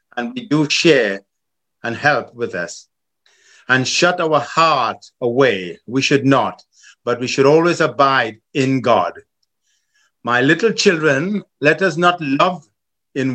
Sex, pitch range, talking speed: male, 130-170 Hz, 140 wpm